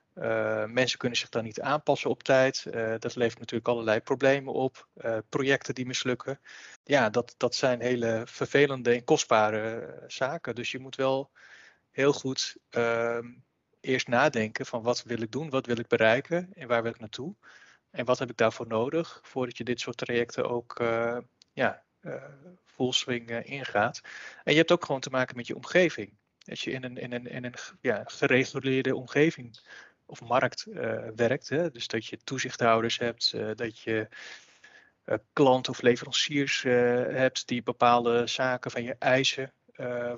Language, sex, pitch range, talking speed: Dutch, male, 120-135 Hz, 165 wpm